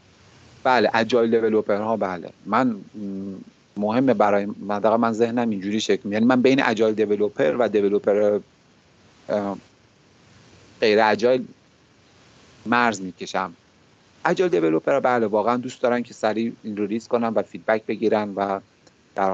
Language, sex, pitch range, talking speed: Persian, male, 100-120 Hz, 125 wpm